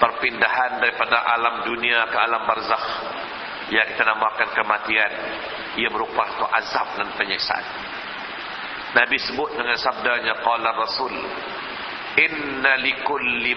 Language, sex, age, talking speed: Malay, male, 50-69, 110 wpm